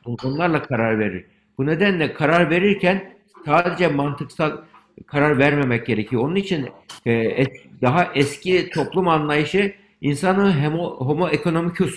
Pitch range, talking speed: 135-170 Hz, 105 wpm